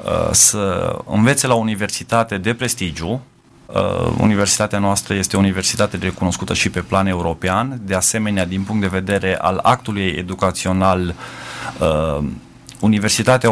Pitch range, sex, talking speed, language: 95-115 Hz, male, 115 wpm, Romanian